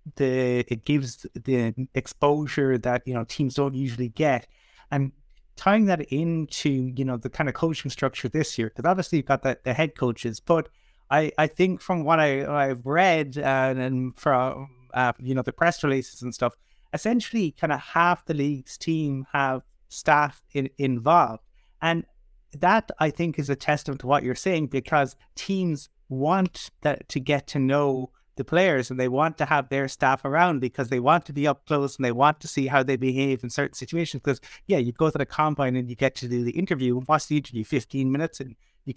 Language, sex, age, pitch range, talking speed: English, male, 30-49, 130-155 Hz, 205 wpm